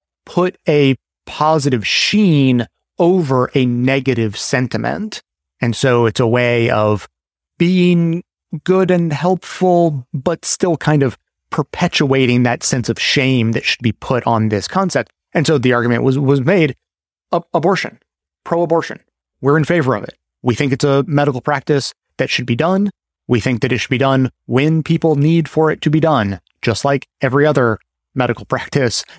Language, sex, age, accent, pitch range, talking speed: English, male, 30-49, American, 120-155 Hz, 165 wpm